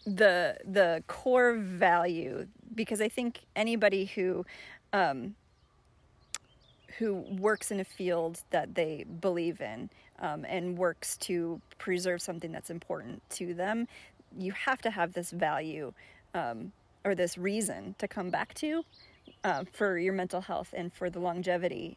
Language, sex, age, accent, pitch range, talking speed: English, female, 30-49, American, 175-210 Hz, 140 wpm